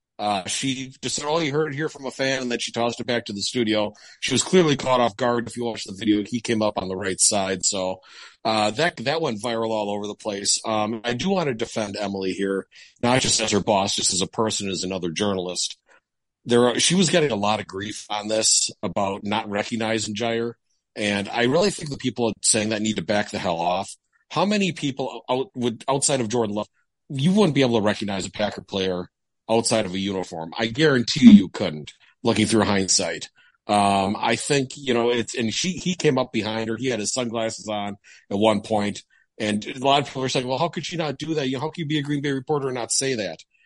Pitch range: 105-135 Hz